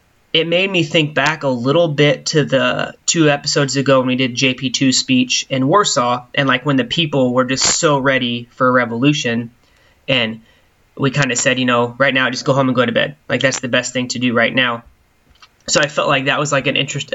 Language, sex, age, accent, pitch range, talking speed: English, male, 20-39, American, 125-145 Hz, 230 wpm